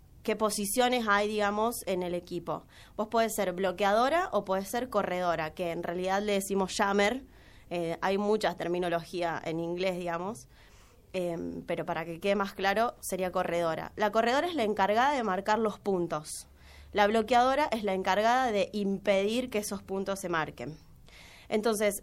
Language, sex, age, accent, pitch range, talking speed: English, female, 20-39, Argentinian, 185-225 Hz, 160 wpm